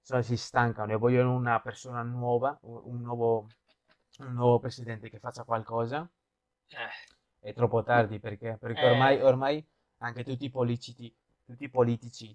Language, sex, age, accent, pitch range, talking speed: Italian, male, 20-39, native, 115-135 Hz, 145 wpm